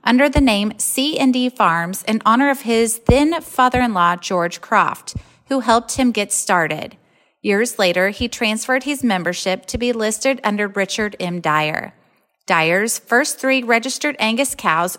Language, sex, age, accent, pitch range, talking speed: English, female, 30-49, American, 185-245 Hz, 145 wpm